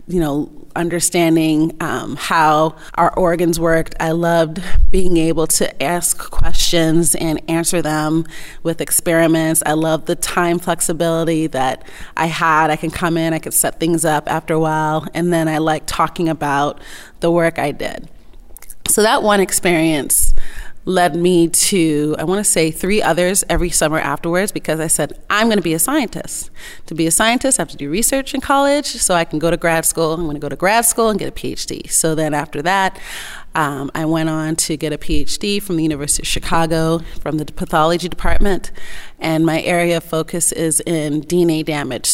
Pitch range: 155-175 Hz